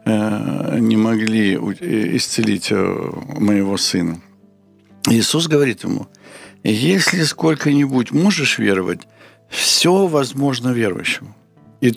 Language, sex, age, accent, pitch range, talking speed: Ukrainian, male, 60-79, native, 115-155 Hz, 80 wpm